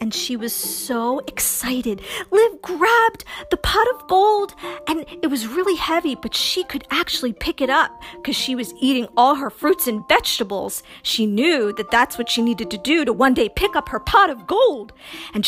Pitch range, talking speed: 255-380 Hz, 200 wpm